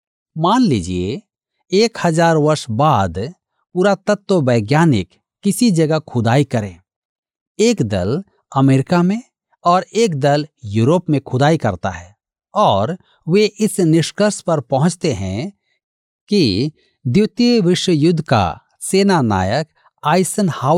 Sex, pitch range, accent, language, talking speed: male, 125-190 Hz, native, Hindi, 115 wpm